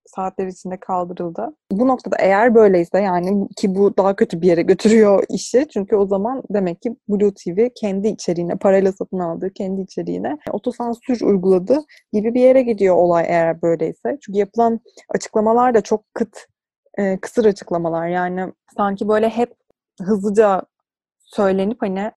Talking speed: 150 wpm